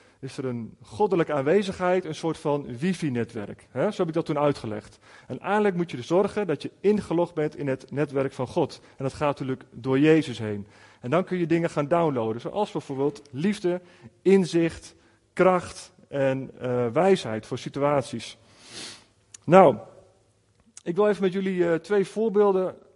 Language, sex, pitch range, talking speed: Dutch, male, 125-170 Hz, 165 wpm